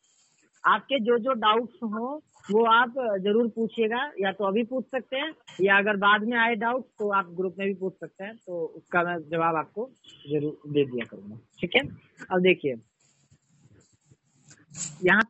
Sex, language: female, Hindi